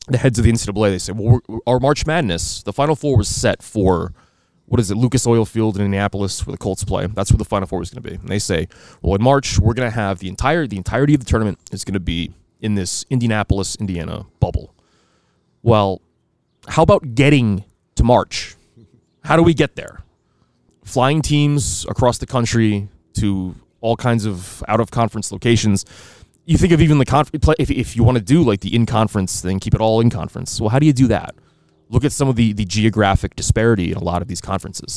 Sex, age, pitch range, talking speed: male, 20-39, 90-115 Hz, 215 wpm